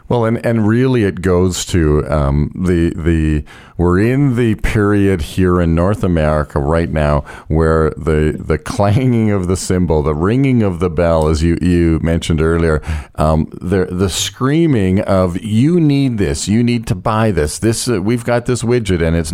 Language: English